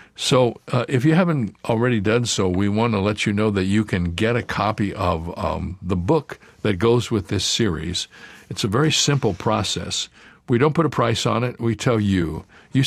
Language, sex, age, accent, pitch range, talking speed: English, male, 60-79, American, 95-125 Hz, 210 wpm